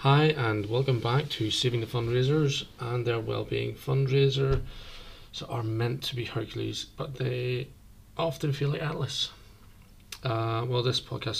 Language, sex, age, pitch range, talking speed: English, male, 20-39, 105-125 Hz, 140 wpm